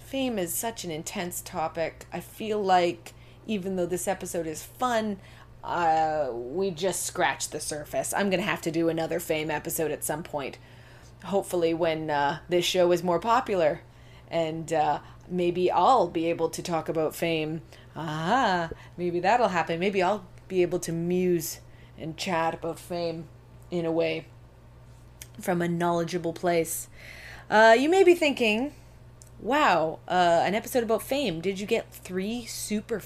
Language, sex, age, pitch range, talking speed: English, female, 30-49, 160-210 Hz, 160 wpm